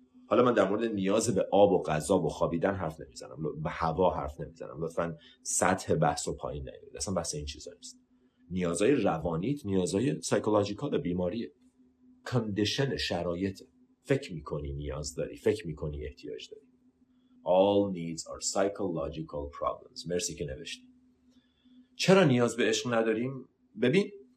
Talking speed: 140 wpm